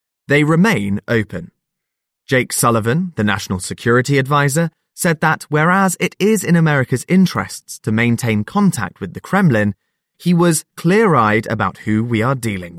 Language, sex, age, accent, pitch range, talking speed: English, male, 20-39, British, 110-175 Hz, 145 wpm